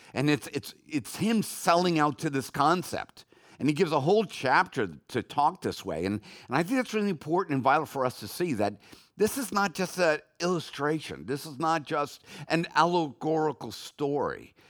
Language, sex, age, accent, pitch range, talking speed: English, male, 50-69, American, 120-170 Hz, 190 wpm